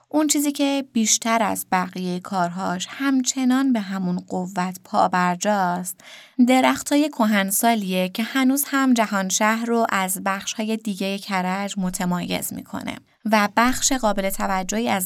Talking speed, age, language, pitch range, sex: 130 wpm, 20-39, Persian, 190-235 Hz, female